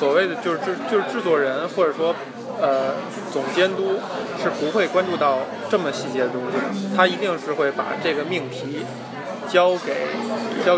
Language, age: Chinese, 20-39